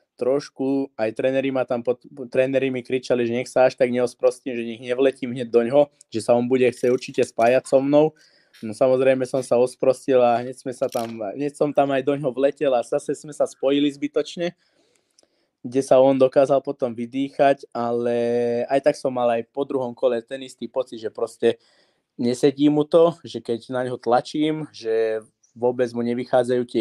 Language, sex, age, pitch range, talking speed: Czech, male, 20-39, 120-140 Hz, 180 wpm